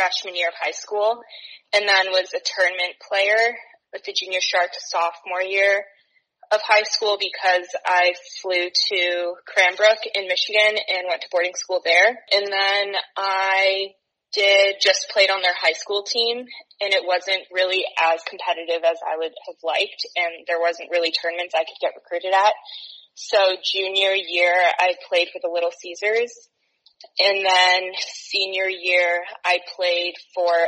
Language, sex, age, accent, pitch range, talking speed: English, female, 20-39, American, 175-210 Hz, 160 wpm